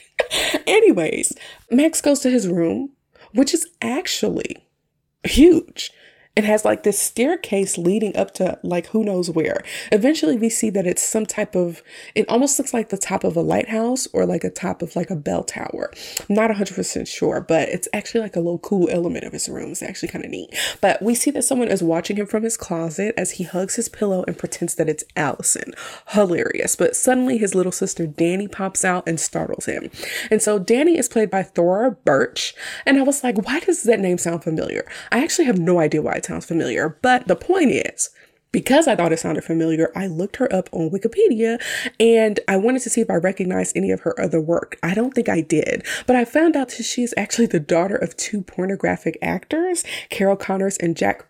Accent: American